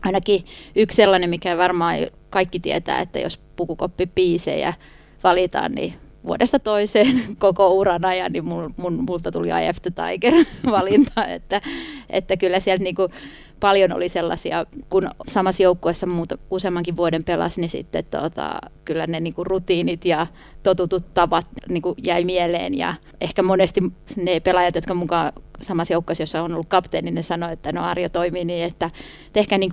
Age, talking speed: 20-39, 155 wpm